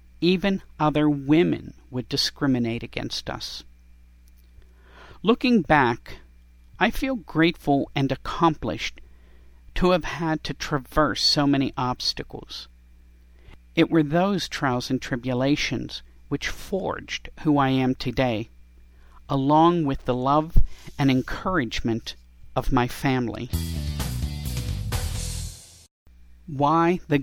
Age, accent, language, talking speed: 50-69, American, English, 100 wpm